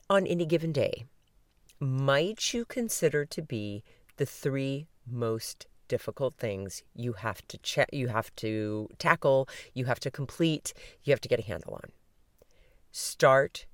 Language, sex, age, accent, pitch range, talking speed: English, female, 40-59, American, 120-175 Hz, 150 wpm